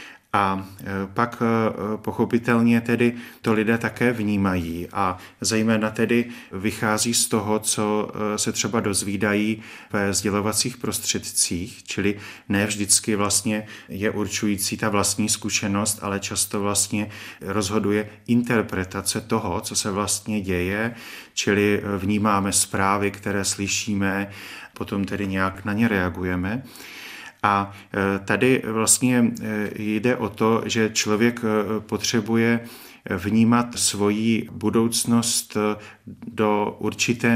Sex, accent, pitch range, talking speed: male, native, 100-115 Hz, 105 wpm